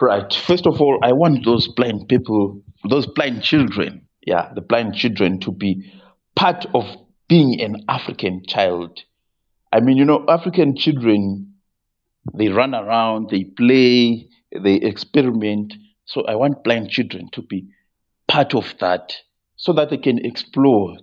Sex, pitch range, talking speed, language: male, 95-125 Hz, 150 wpm, English